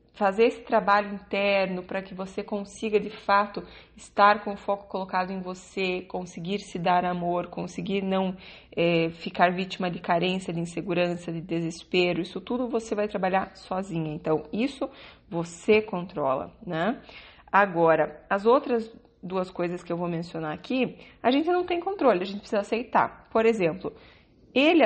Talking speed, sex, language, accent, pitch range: 155 wpm, female, Portuguese, Brazilian, 180-235 Hz